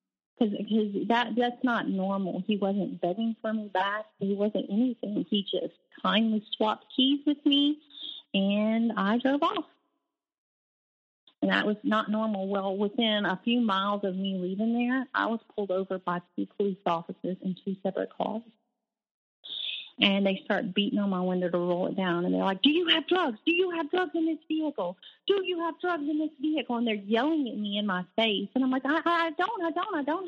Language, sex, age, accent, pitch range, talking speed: English, female, 30-49, American, 195-275 Hz, 200 wpm